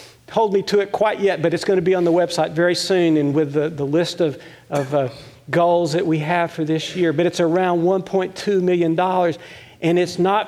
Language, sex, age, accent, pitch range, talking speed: English, male, 50-69, American, 135-165 Hz, 225 wpm